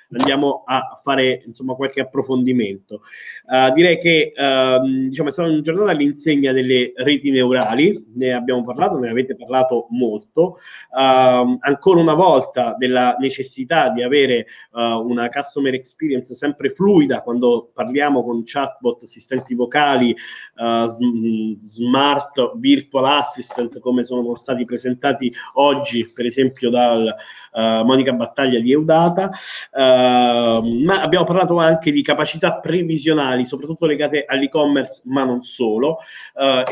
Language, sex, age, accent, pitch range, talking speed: Italian, male, 30-49, native, 125-145 Hz, 130 wpm